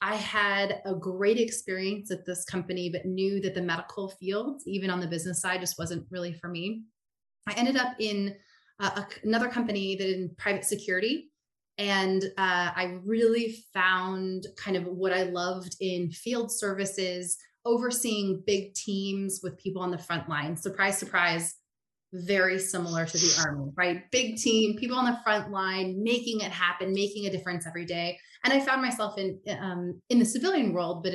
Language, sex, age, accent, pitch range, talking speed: English, female, 20-39, American, 180-210 Hz, 175 wpm